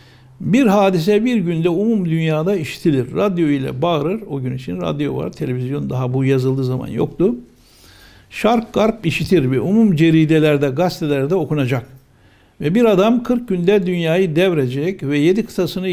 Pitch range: 120-175 Hz